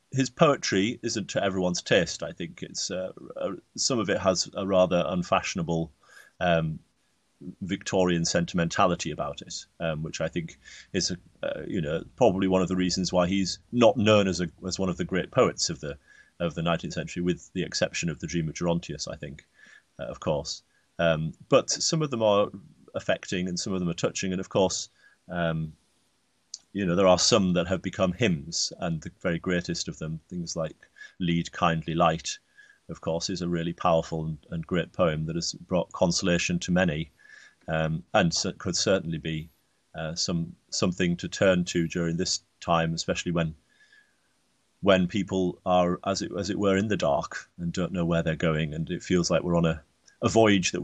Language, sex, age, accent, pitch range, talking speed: English, male, 30-49, British, 85-95 Hz, 195 wpm